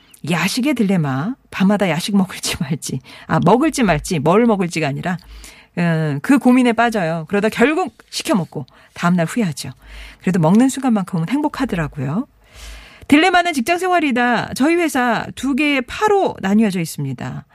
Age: 40-59